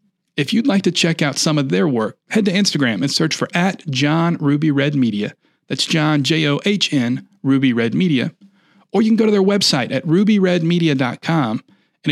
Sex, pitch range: male, 135-180 Hz